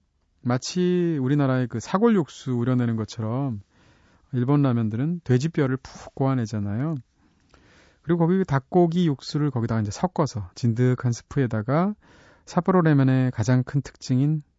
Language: Korean